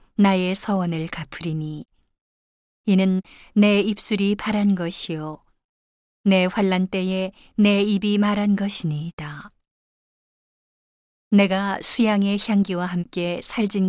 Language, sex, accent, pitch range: Korean, female, native, 170-200 Hz